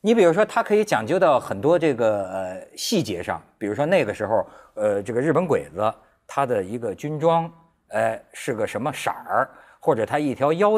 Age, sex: 50-69, male